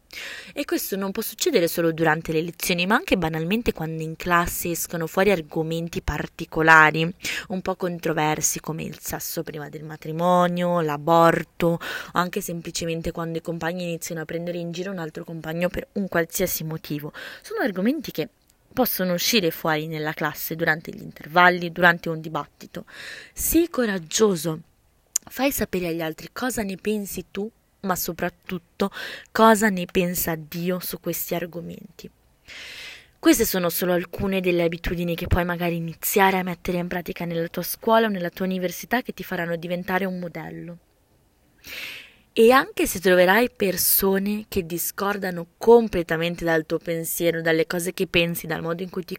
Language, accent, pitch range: Italian, native, 170-215 Hz